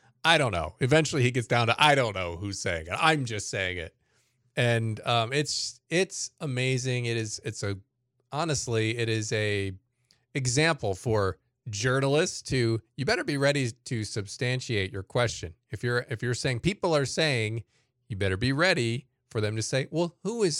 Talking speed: 180 wpm